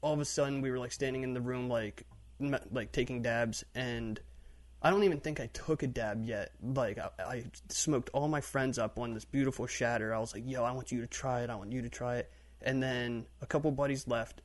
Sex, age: male, 20-39